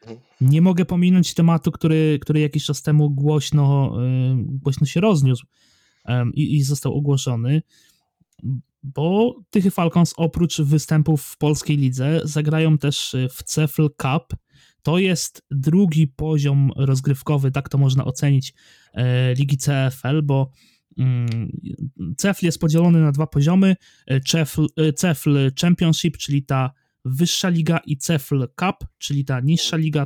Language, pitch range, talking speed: Polish, 135-160 Hz, 125 wpm